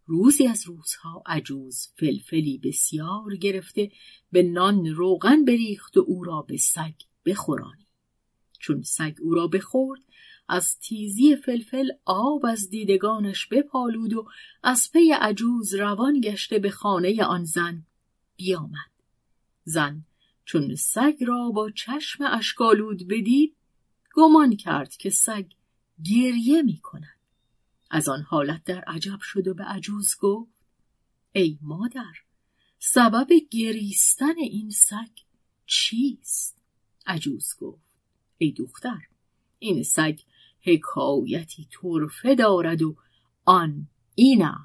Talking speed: 115 wpm